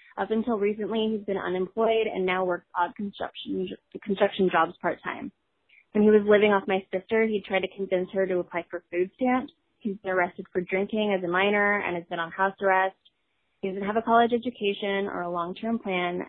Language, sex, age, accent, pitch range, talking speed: English, female, 20-39, American, 180-210 Hz, 200 wpm